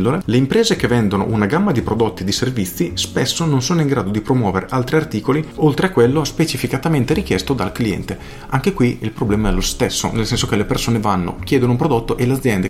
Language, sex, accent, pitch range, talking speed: Italian, male, native, 100-125 Hz, 215 wpm